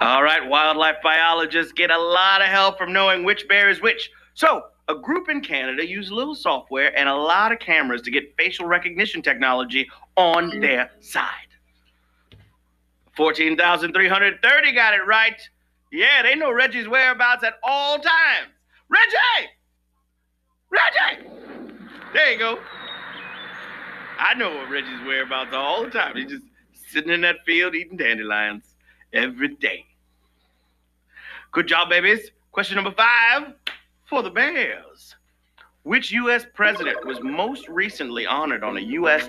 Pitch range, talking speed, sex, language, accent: 150-250 Hz, 135 wpm, male, English, American